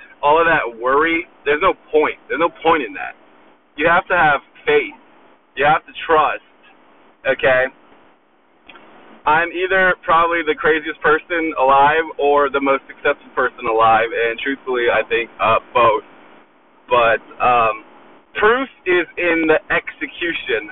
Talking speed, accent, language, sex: 140 wpm, American, English, male